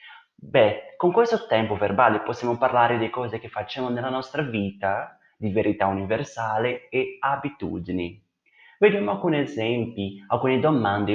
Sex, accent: male, native